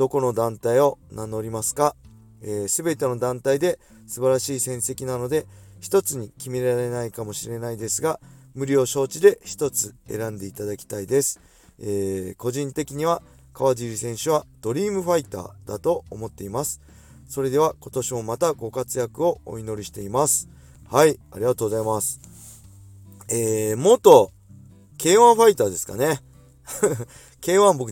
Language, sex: Japanese, male